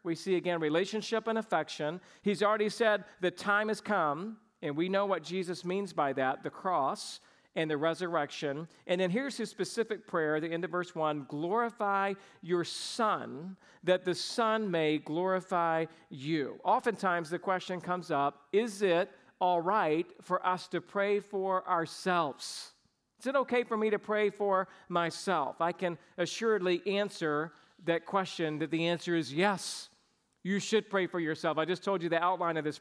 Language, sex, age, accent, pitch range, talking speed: English, male, 50-69, American, 160-200 Hz, 170 wpm